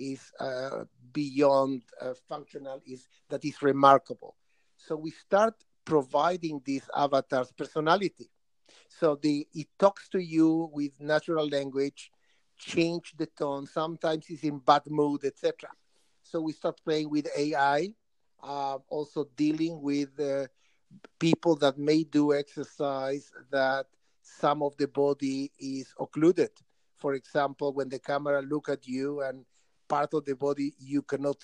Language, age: English, 50-69